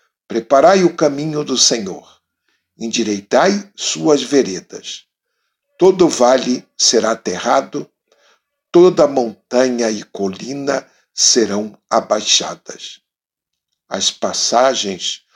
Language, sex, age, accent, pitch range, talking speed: Portuguese, male, 60-79, Brazilian, 115-175 Hz, 80 wpm